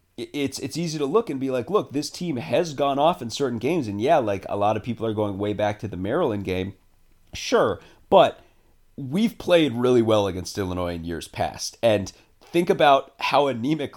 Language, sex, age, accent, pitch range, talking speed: English, male, 30-49, American, 95-130 Hz, 205 wpm